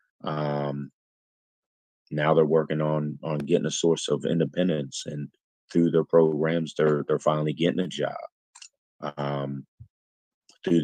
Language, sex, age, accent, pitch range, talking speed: English, male, 30-49, American, 75-85 Hz, 125 wpm